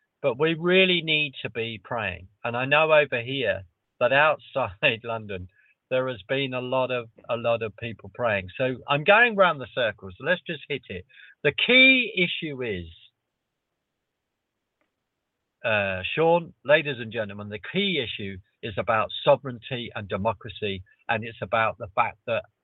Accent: British